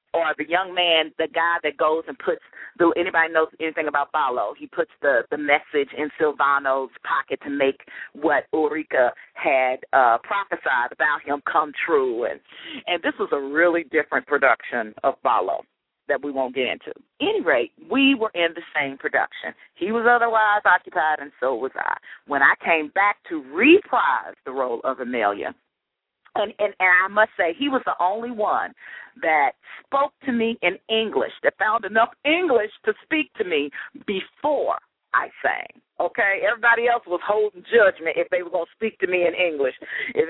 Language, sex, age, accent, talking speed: English, female, 40-59, American, 180 wpm